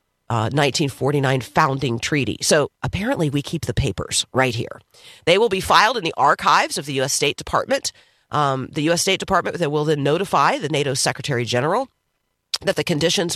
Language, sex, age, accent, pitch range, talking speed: English, female, 40-59, American, 130-155 Hz, 175 wpm